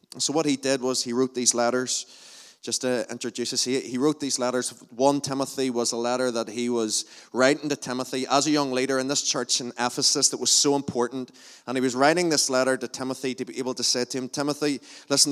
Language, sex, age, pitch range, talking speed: English, male, 20-39, 125-145 Hz, 230 wpm